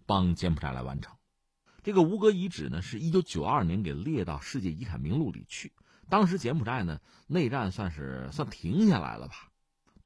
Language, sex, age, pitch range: Chinese, male, 50-69, 90-135 Hz